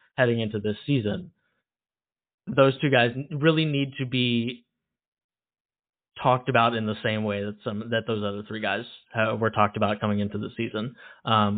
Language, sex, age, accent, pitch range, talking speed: English, male, 20-39, American, 105-155 Hz, 165 wpm